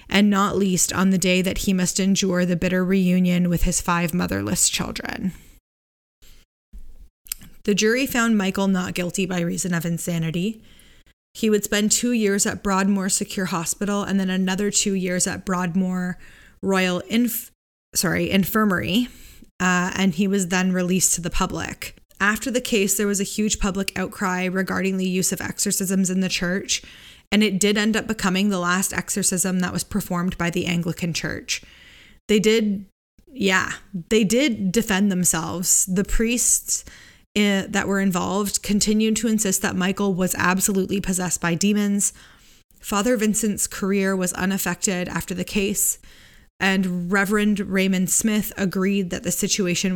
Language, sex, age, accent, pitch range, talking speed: English, female, 20-39, American, 180-205 Hz, 155 wpm